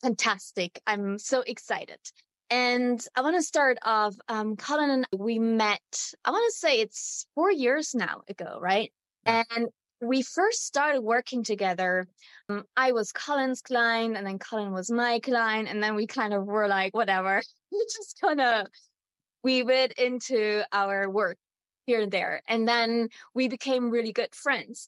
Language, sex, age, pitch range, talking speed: English, female, 20-39, 215-255 Hz, 165 wpm